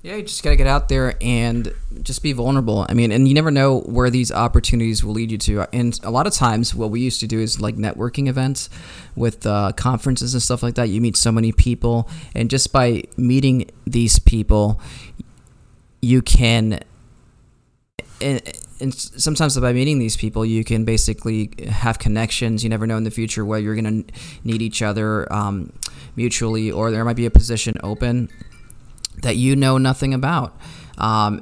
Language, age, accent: English, 20-39, American